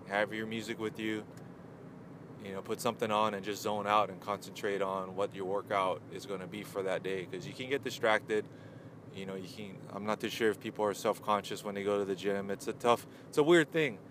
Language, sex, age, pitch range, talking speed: English, male, 20-39, 100-115 Hz, 245 wpm